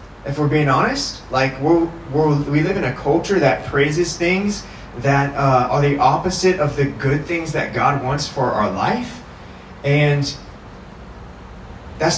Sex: male